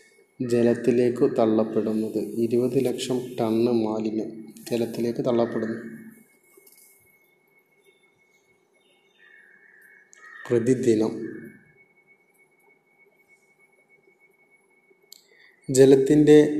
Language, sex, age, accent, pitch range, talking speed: Malayalam, male, 30-49, native, 120-130 Hz, 35 wpm